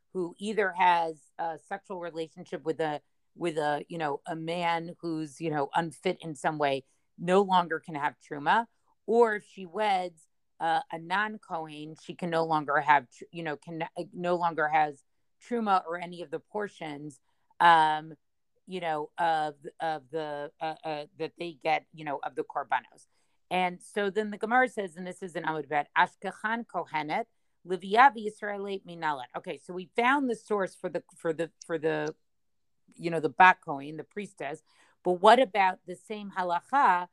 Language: English